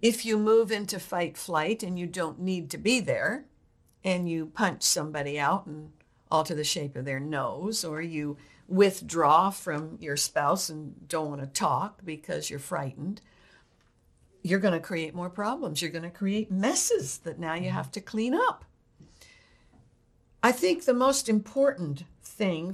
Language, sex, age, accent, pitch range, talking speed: English, female, 60-79, American, 165-220 Hz, 160 wpm